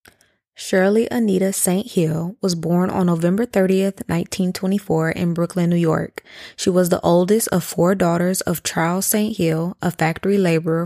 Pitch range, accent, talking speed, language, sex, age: 170-195 Hz, American, 155 wpm, English, female, 20-39